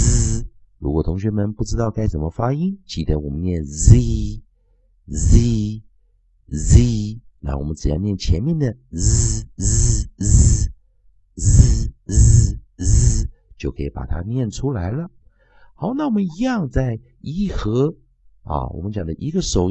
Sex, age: male, 50-69